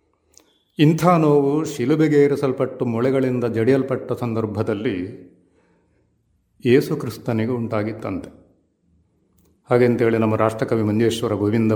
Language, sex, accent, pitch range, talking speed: Kannada, male, native, 95-135 Hz, 65 wpm